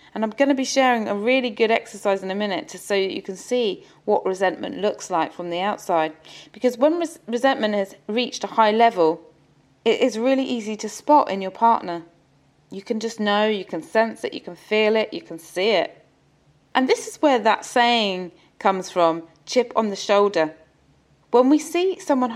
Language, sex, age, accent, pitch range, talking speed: English, female, 30-49, British, 175-235 Hz, 195 wpm